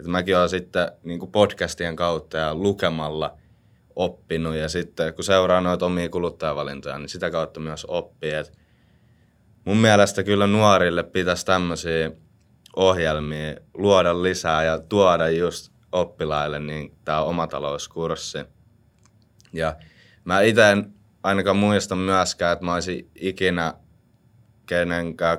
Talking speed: 125 wpm